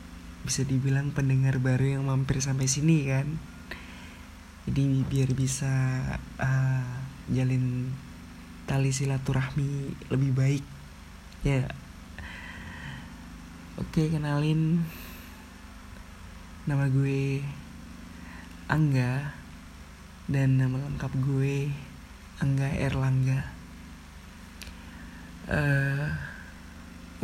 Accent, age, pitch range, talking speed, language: native, 20-39, 85-135 Hz, 75 wpm, Indonesian